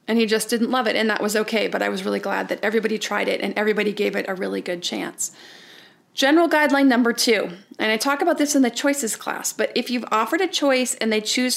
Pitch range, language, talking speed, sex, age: 210-245 Hz, English, 255 wpm, female, 30-49